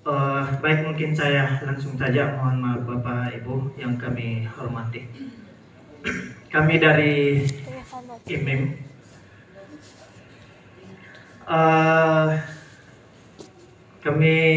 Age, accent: 30-49, native